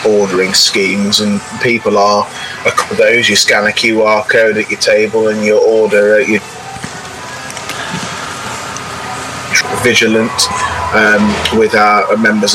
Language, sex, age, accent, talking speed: English, male, 30-49, British, 125 wpm